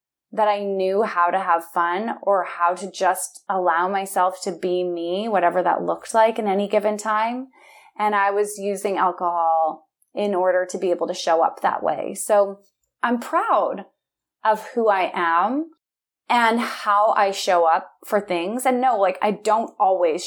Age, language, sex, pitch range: 20-39, English, female, 185-255 Hz